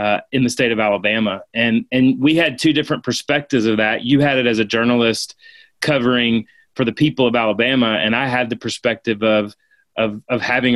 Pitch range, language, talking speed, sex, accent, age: 115-135 Hz, English, 200 wpm, male, American, 30-49